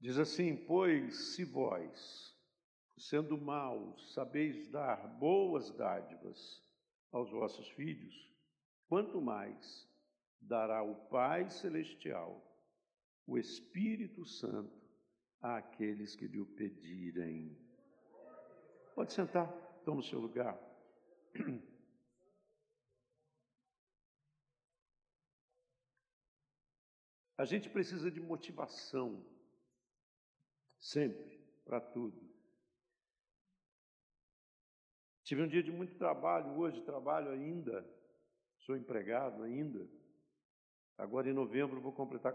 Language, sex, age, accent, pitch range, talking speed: Portuguese, male, 60-79, Brazilian, 125-175 Hz, 85 wpm